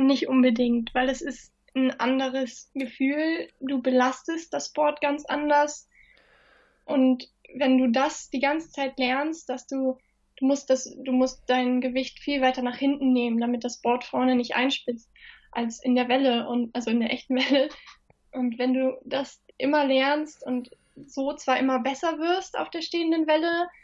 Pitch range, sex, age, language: 245-275 Hz, female, 10-29, German